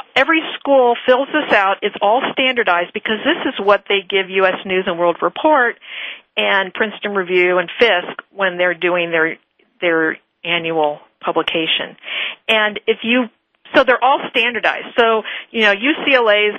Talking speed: 150 wpm